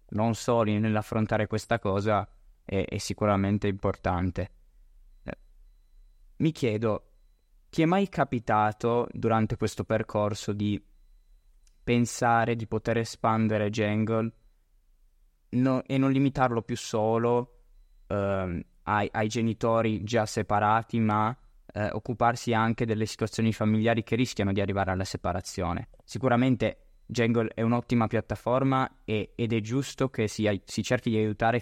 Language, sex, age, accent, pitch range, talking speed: Italian, male, 20-39, native, 100-115 Hz, 120 wpm